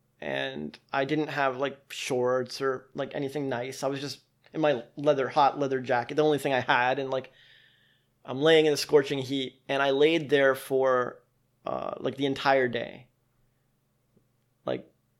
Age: 20-39